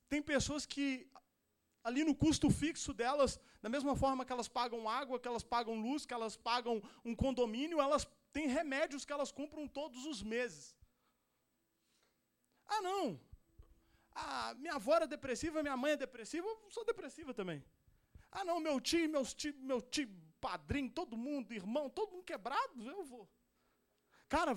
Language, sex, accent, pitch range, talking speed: Portuguese, male, Brazilian, 245-315 Hz, 155 wpm